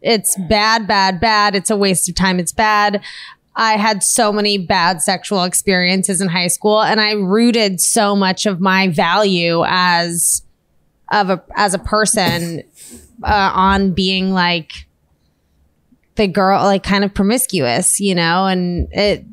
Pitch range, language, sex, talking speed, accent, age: 175-210 Hz, English, female, 150 wpm, American, 20-39